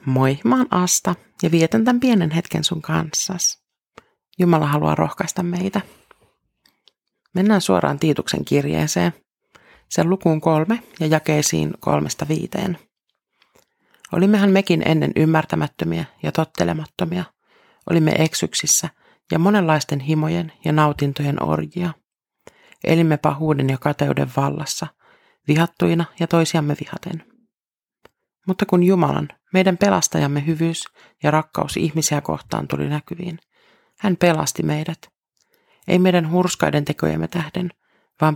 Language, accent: Finnish, native